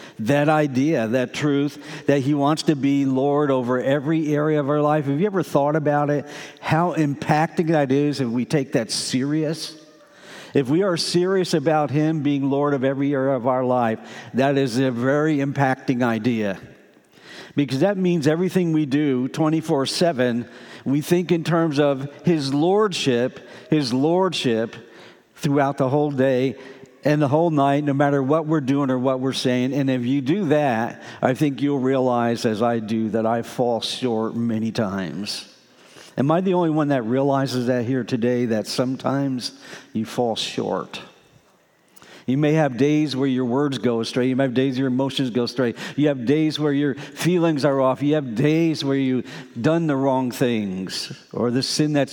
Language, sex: English, male